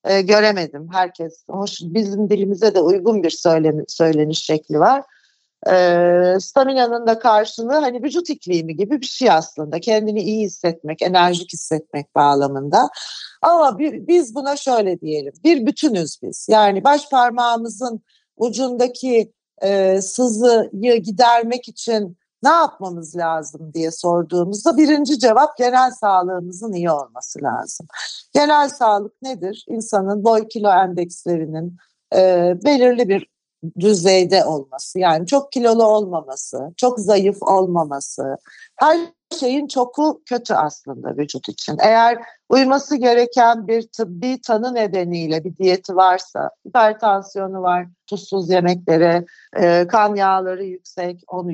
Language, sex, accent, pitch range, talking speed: Turkish, female, native, 170-240 Hz, 115 wpm